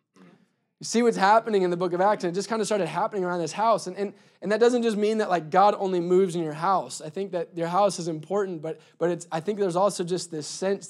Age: 20-39